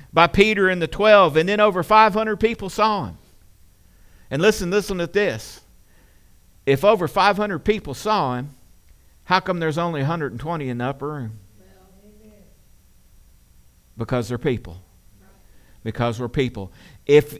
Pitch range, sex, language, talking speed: 95-140 Hz, male, English, 135 wpm